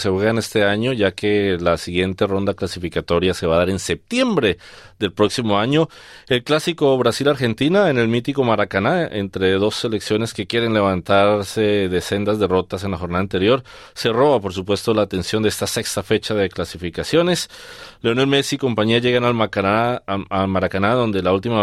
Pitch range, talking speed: 90-110 Hz, 175 wpm